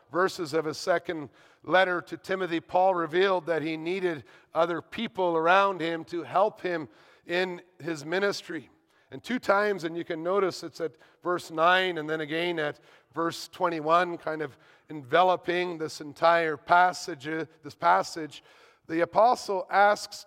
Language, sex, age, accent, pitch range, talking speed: English, male, 50-69, American, 155-185 Hz, 150 wpm